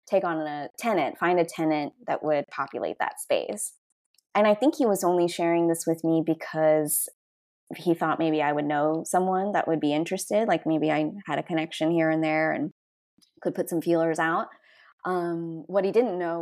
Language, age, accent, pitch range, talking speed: English, 20-39, American, 155-175 Hz, 195 wpm